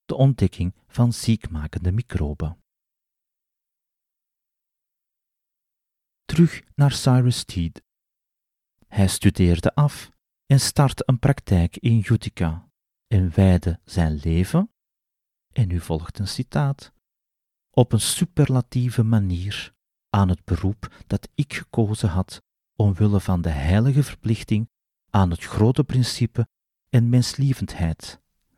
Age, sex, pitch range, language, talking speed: 40-59, male, 95-130 Hz, Dutch, 105 wpm